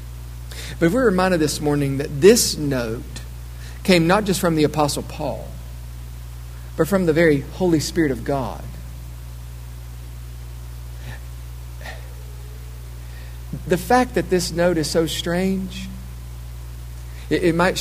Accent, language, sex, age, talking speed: American, English, male, 50-69, 120 wpm